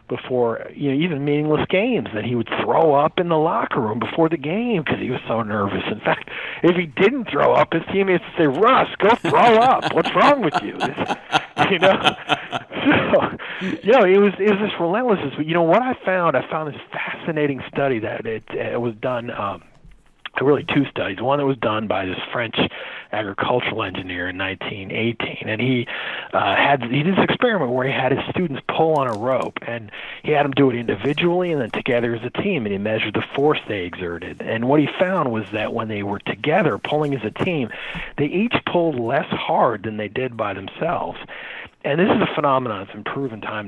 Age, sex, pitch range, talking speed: 40-59, male, 110-165 Hz, 215 wpm